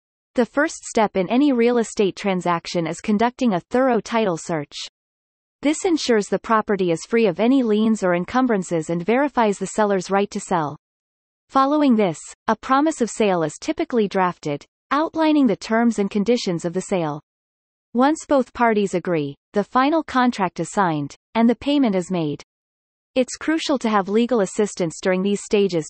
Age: 30-49